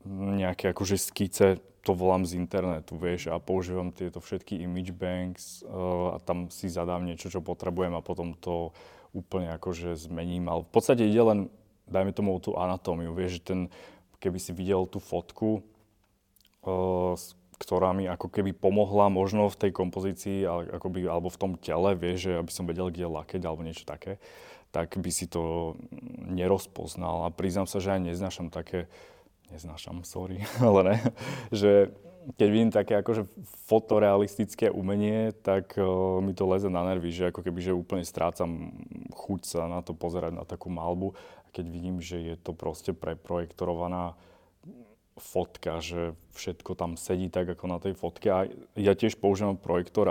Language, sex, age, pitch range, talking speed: Slovak, male, 20-39, 85-95 Hz, 160 wpm